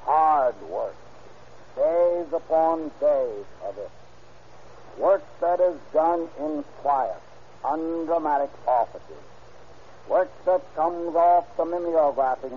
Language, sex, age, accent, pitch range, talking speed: English, male, 60-79, American, 150-185 Hz, 100 wpm